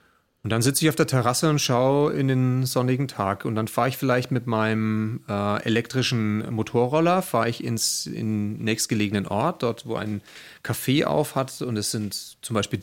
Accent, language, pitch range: German, German, 110-140 Hz